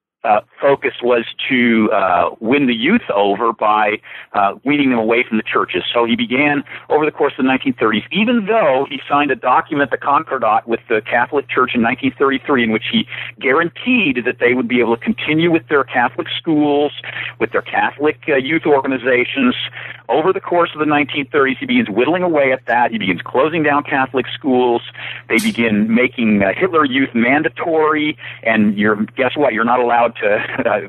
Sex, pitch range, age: male, 115-155 Hz, 40-59